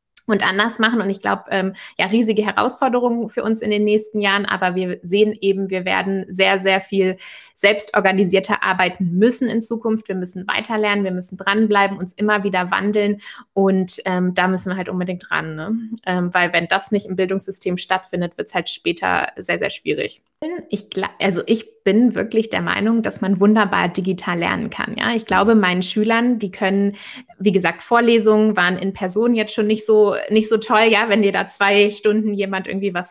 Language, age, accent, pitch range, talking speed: German, 20-39, German, 190-220 Hz, 195 wpm